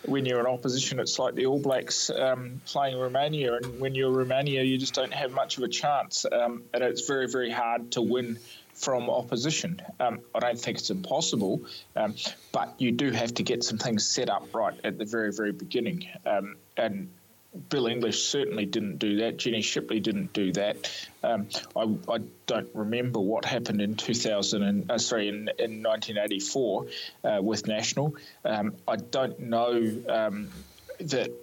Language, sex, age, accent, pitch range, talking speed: English, male, 20-39, Australian, 105-130 Hz, 180 wpm